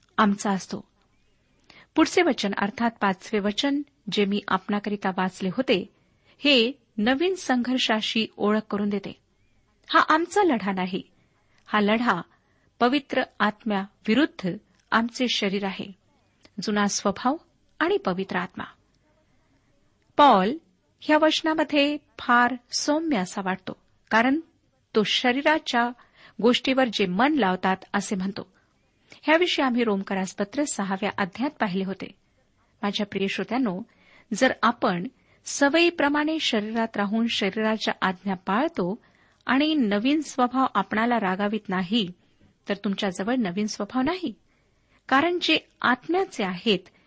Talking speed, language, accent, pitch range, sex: 105 wpm, Marathi, native, 200-275 Hz, female